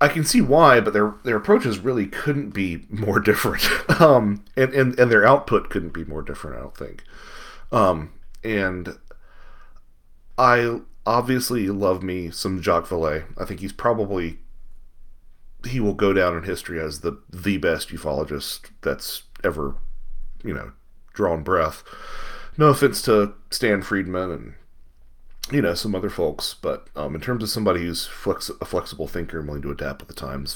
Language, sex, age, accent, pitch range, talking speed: English, male, 30-49, American, 85-125 Hz, 165 wpm